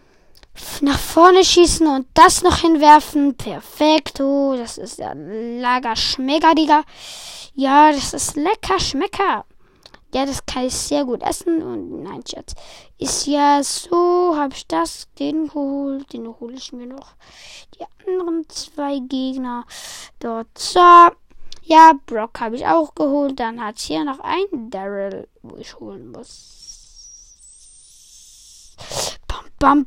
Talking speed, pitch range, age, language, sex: 130 wpm, 245-325 Hz, 20-39, German, female